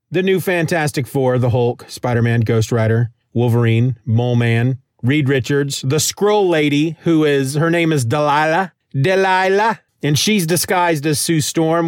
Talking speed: 150 wpm